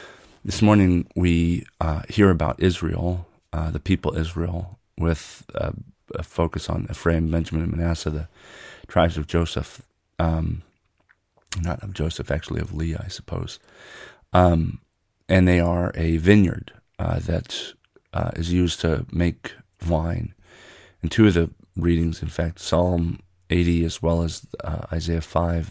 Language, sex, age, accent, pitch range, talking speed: English, male, 40-59, American, 80-95 Hz, 145 wpm